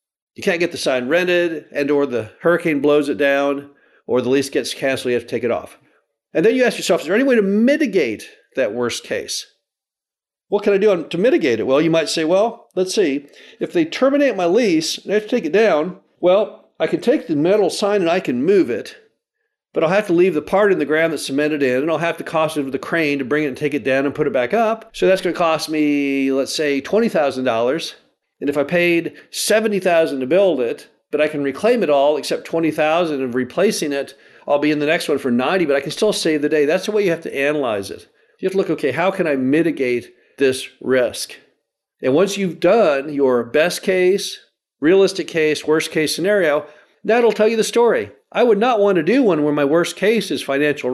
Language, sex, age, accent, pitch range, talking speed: English, male, 50-69, American, 145-210 Hz, 240 wpm